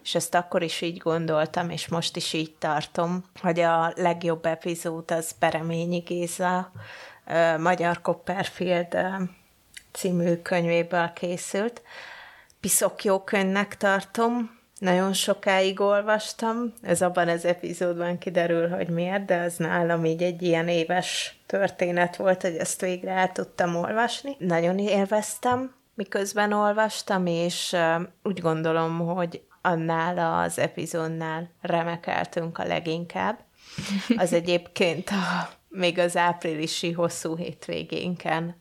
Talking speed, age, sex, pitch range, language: 115 wpm, 30-49, female, 170-195 Hz, Hungarian